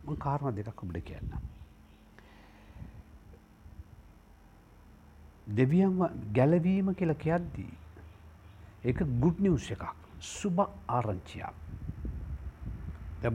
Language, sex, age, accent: English, male, 60-79, Indian